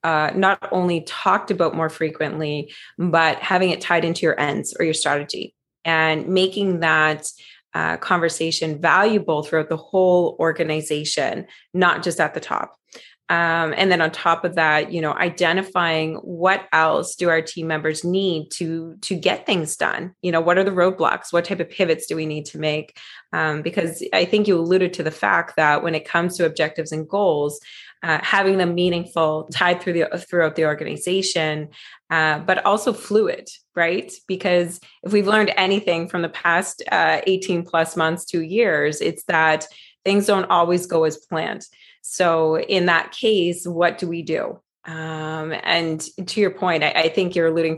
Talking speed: 175 wpm